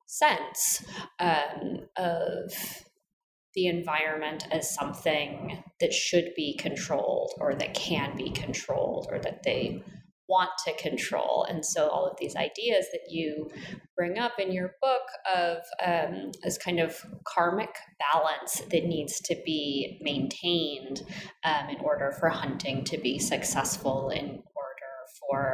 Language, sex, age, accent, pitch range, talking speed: English, female, 20-39, American, 160-210 Hz, 135 wpm